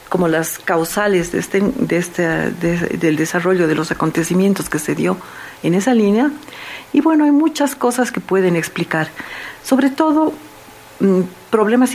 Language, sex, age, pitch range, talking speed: Spanish, female, 50-69, 170-220 Hz, 155 wpm